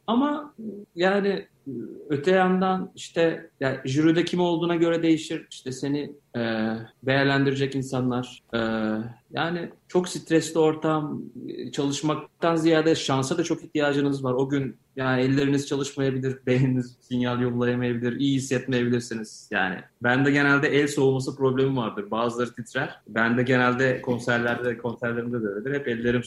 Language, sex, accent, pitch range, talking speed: Turkish, male, native, 120-155 Hz, 130 wpm